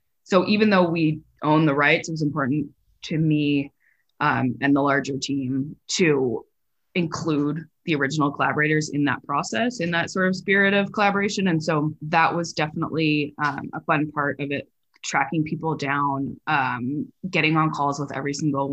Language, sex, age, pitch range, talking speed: English, female, 20-39, 140-160 Hz, 170 wpm